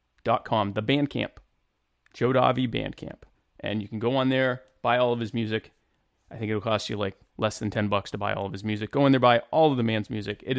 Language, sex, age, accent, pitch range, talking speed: English, male, 30-49, American, 110-145 Hz, 250 wpm